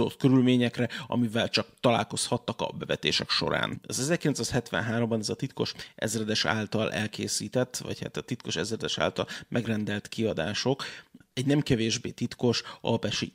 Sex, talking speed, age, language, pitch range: male, 125 wpm, 30-49, Hungarian, 110-125 Hz